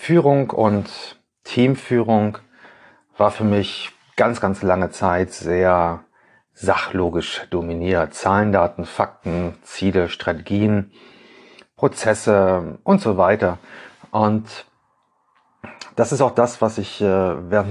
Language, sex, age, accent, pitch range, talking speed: German, male, 30-49, German, 95-120 Hz, 100 wpm